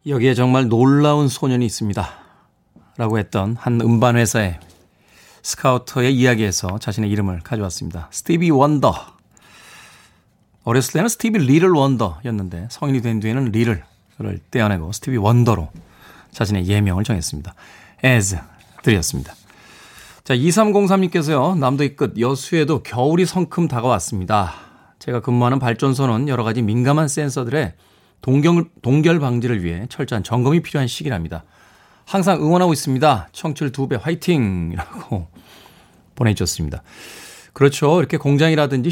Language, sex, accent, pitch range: Korean, male, native, 105-150 Hz